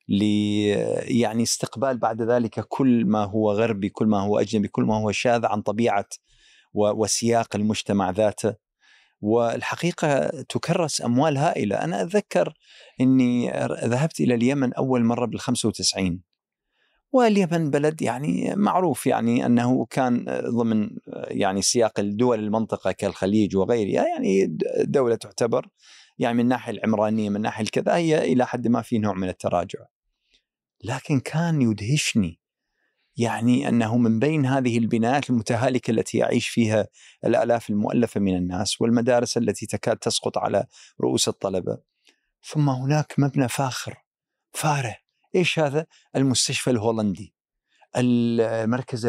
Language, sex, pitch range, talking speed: Arabic, male, 105-130 Hz, 125 wpm